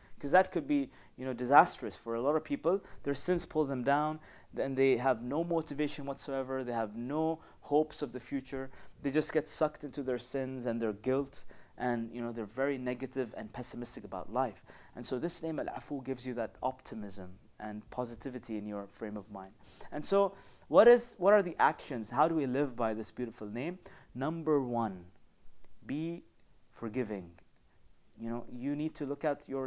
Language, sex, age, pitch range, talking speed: English, male, 30-49, 115-140 Hz, 190 wpm